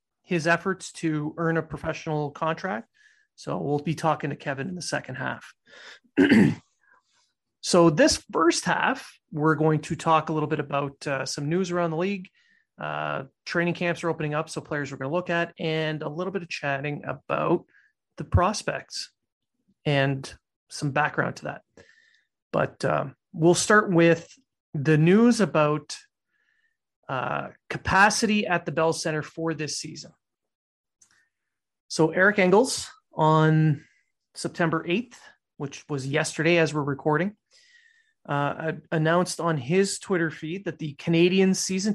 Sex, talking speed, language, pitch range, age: male, 145 wpm, English, 155-190 Hz, 30-49